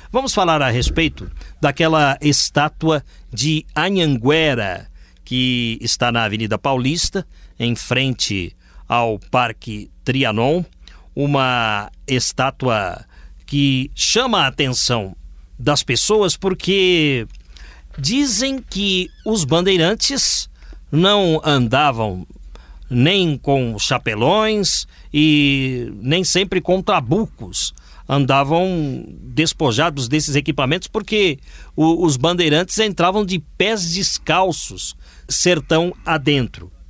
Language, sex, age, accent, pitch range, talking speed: Portuguese, male, 50-69, Brazilian, 115-170 Hz, 90 wpm